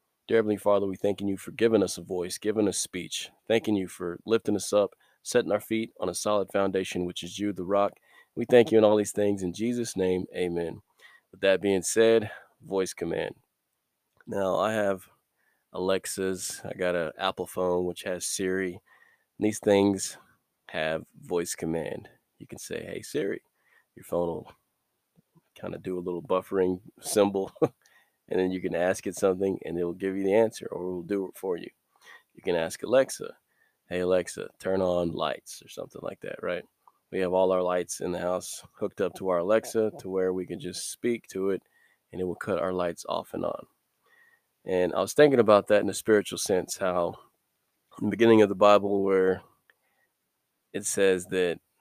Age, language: 20-39, English